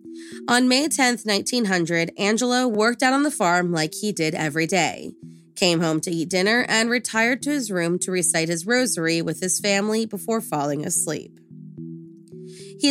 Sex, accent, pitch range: female, American, 165-230 Hz